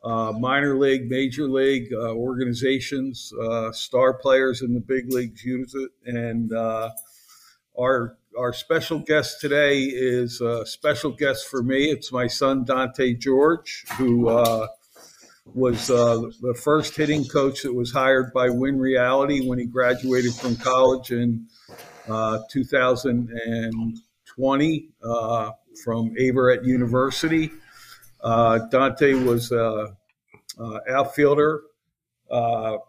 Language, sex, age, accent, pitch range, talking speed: English, male, 50-69, American, 115-135 Hz, 125 wpm